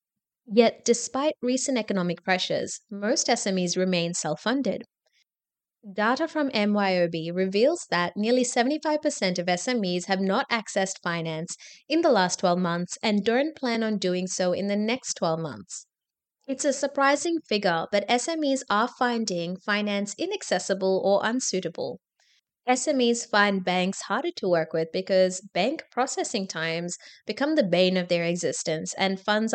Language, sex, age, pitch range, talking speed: English, female, 20-39, 175-245 Hz, 140 wpm